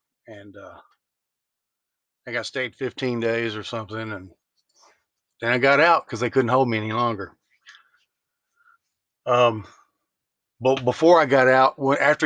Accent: American